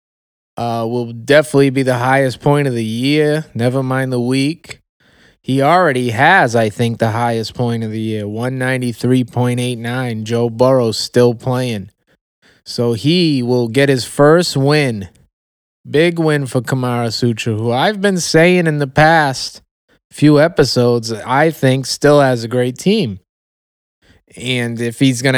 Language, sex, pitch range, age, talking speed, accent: English, male, 120-150 Hz, 20-39, 145 wpm, American